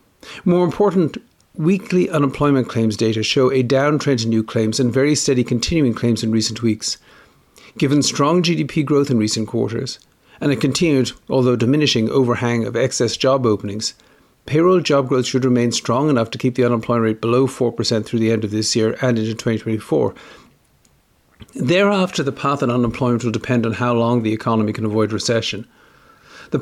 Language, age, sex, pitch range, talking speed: English, 50-69, male, 115-145 Hz, 170 wpm